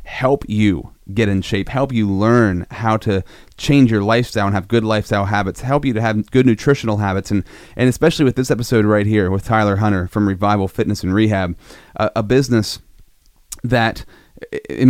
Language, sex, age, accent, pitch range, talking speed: English, male, 30-49, American, 100-120 Hz, 185 wpm